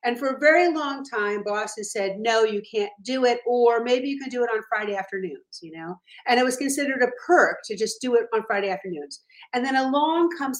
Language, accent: English, American